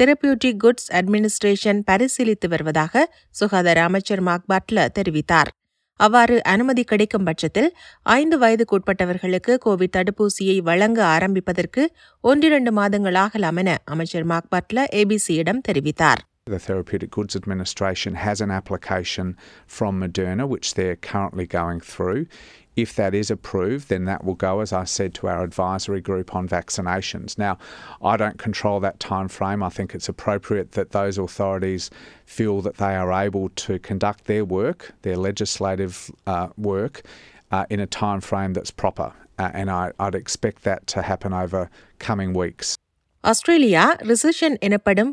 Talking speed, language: 125 wpm, Tamil